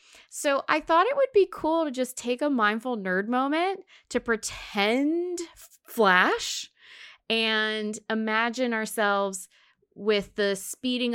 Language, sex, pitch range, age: English, female, 200-280 Hz, 20-39